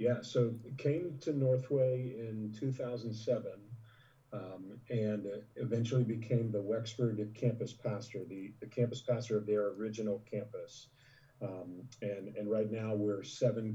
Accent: American